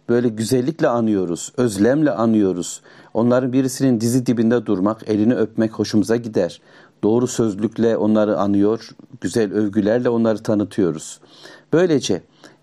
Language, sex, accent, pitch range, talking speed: Turkish, male, native, 110-135 Hz, 110 wpm